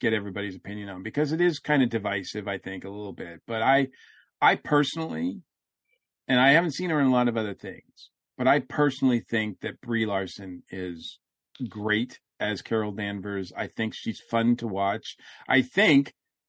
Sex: male